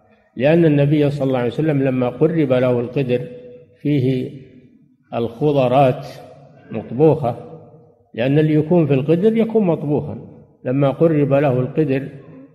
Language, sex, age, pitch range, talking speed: Arabic, male, 50-69, 125-155 Hz, 115 wpm